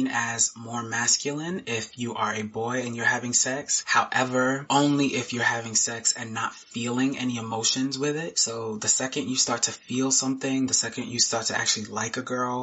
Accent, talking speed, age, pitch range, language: American, 200 wpm, 20-39, 115-135 Hz, English